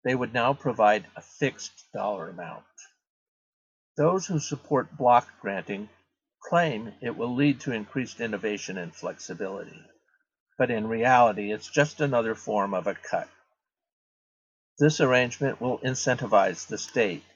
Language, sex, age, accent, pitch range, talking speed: English, male, 50-69, American, 105-145 Hz, 130 wpm